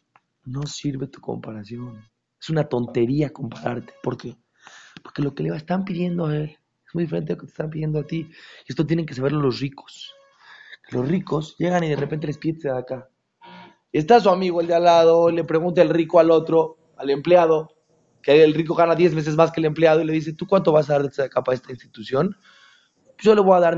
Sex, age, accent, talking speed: male, 30-49, Mexican, 230 wpm